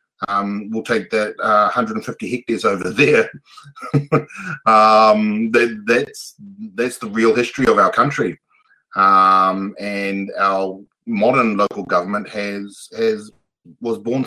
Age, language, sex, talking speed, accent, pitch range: 30-49, English, male, 120 wpm, Australian, 90-110 Hz